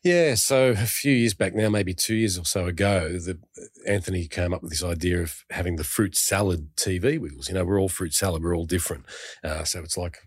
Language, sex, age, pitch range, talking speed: English, male, 40-59, 90-110 Hz, 230 wpm